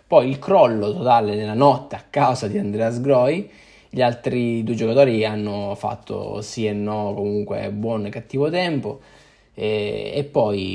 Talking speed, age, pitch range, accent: 155 wpm, 10-29, 105-130 Hz, native